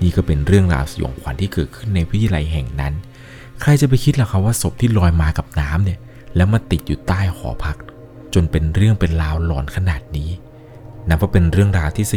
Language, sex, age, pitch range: Thai, male, 20-39, 85-115 Hz